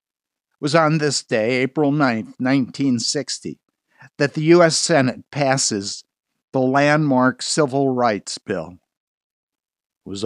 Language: English